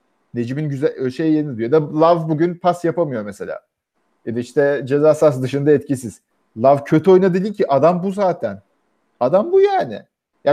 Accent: Turkish